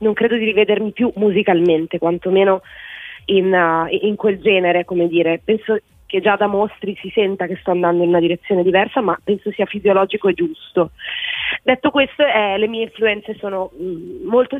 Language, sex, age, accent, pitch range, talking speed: Italian, female, 20-39, native, 175-210 Hz, 170 wpm